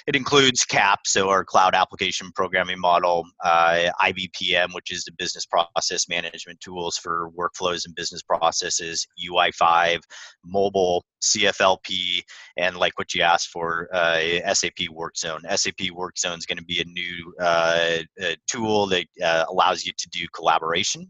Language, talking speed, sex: English, 155 wpm, male